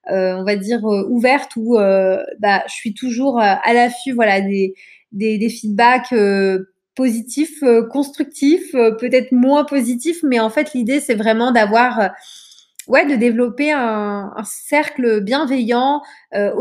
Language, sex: French, female